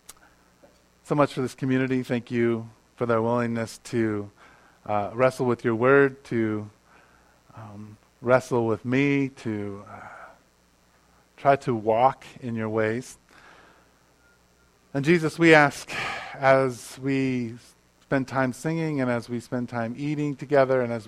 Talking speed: 135 wpm